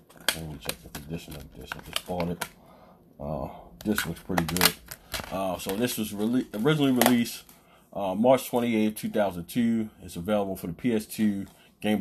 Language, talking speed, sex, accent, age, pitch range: English, 160 wpm, male, American, 30-49, 95-110 Hz